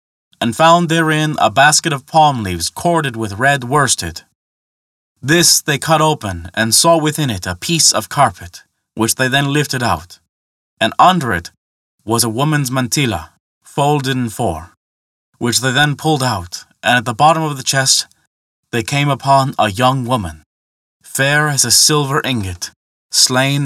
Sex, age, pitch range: male, 20-39, 110-160 Hz